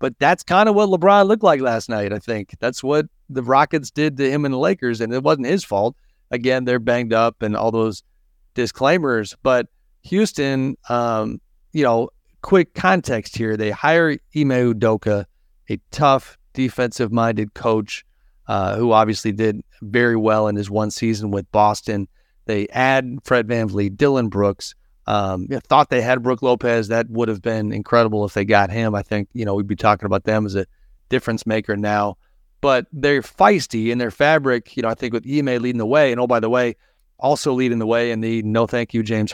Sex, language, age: male, English, 40-59